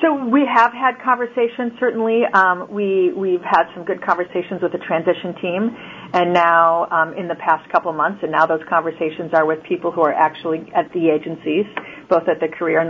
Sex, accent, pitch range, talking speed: female, American, 170-200 Hz, 205 wpm